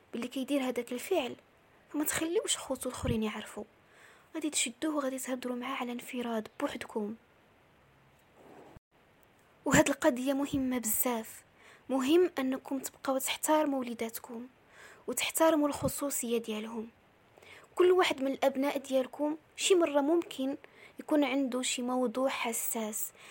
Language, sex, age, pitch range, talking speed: Arabic, female, 20-39, 245-290 Hz, 110 wpm